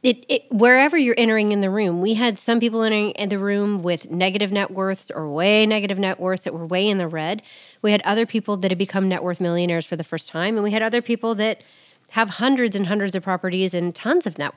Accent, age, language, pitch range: American, 30-49, English, 180-220 Hz